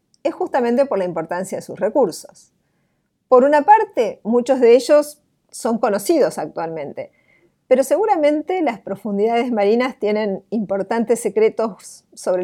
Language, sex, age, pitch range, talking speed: English, female, 50-69, 205-270 Hz, 125 wpm